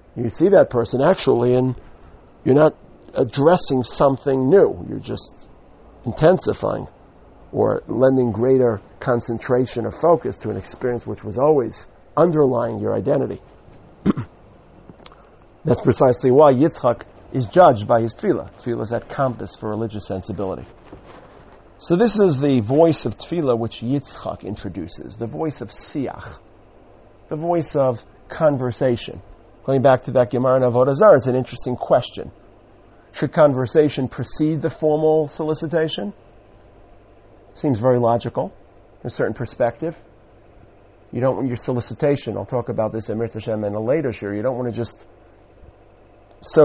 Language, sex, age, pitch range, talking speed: English, male, 50-69, 110-135 Hz, 140 wpm